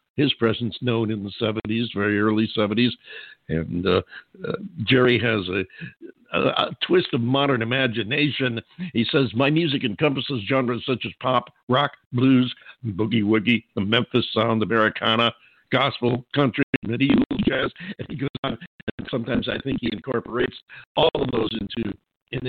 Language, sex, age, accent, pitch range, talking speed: English, male, 60-79, American, 105-135 Hz, 155 wpm